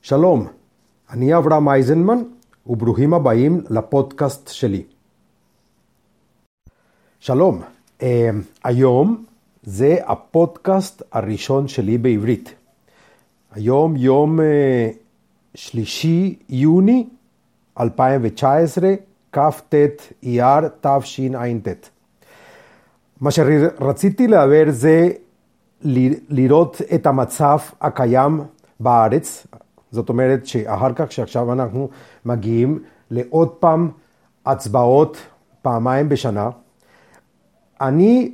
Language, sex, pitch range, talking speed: Hebrew, male, 125-165 Hz, 70 wpm